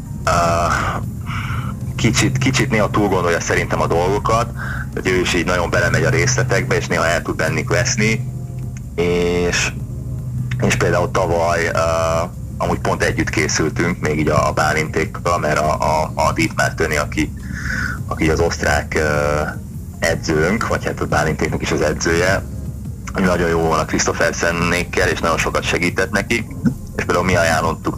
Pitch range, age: 80-110 Hz, 30-49